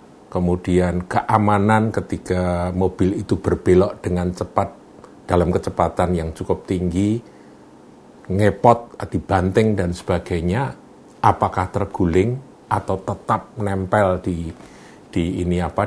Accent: native